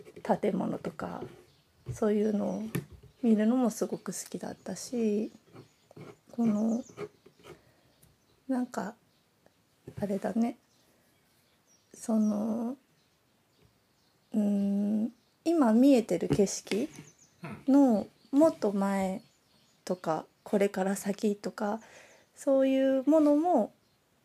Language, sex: Japanese, female